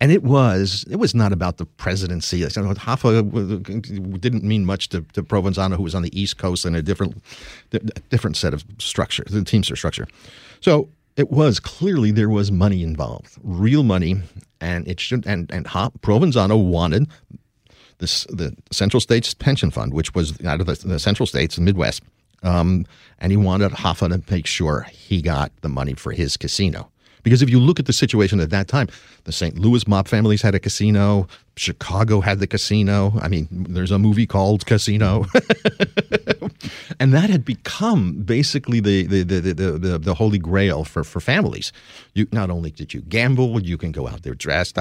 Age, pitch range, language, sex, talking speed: 50-69, 90-115 Hz, English, male, 185 wpm